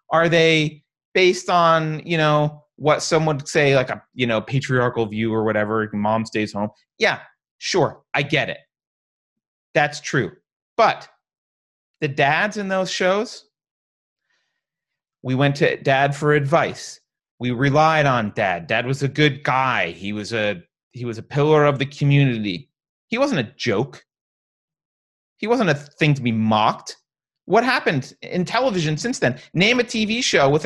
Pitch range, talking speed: 130-170 Hz, 160 wpm